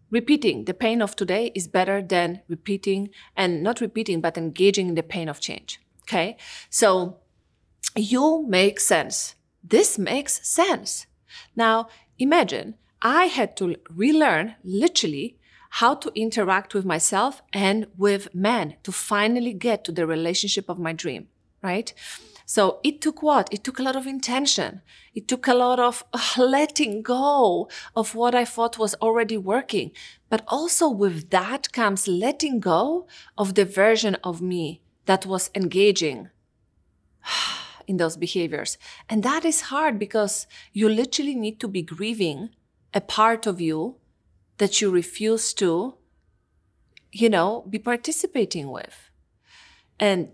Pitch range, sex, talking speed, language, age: 195-270 Hz, female, 140 wpm, English, 30-49